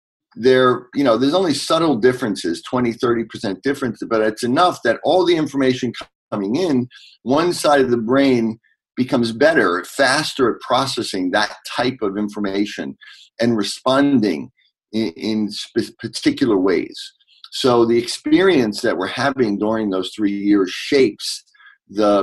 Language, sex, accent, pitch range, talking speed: English, male, American, 105-175 Hz, 145 wpm